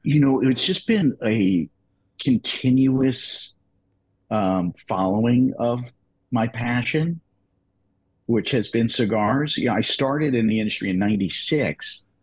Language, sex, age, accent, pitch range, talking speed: English, male, 50-69, American, 95-125 Hz, 125 wpm